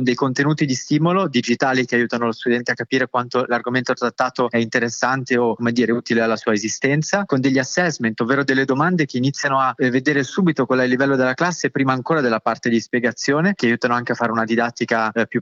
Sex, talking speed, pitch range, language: male, 215 wpm, 120-145 Hz, Italian